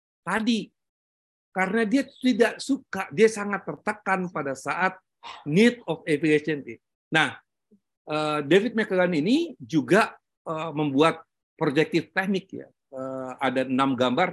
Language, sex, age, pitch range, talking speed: Indonesian, male, 50-69, 135-190 Hz, 105 wpm